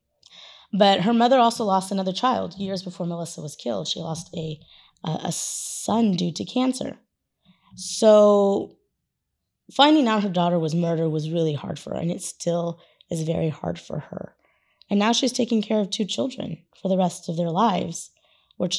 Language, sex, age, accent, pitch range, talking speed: English, female, 20-39, American, 170-215 Hz, 180 wpm